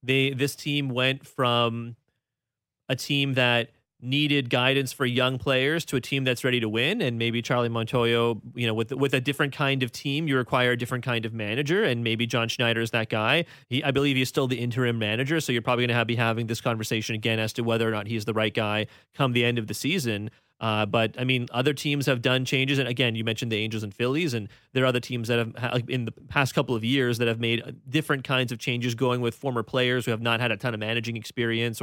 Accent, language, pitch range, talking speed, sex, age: American, English, 115-140 Hz, 245 wpm, male, 30-49